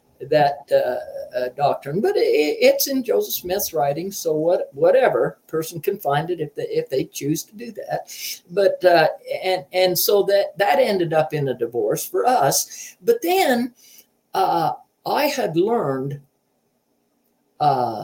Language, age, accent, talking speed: English, 60-79, American, 155 wpm